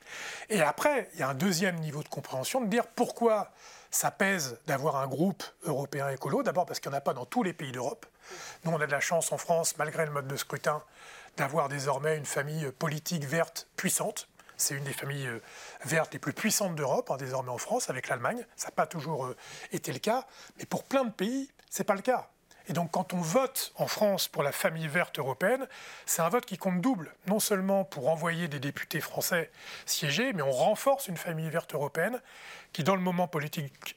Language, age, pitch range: French, 40-59, 145-195 Hz